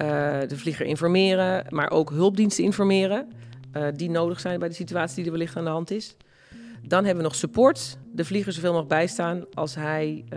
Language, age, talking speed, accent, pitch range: Dutch, 40-59, 205 wpm, Dutch, 150-180 Hz